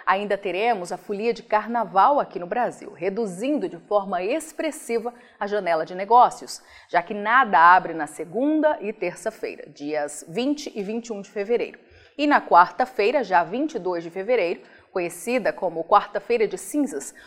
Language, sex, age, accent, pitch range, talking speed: Portuguese, female, 30-49, Brazilian, 190-255 Hz, 150 wpm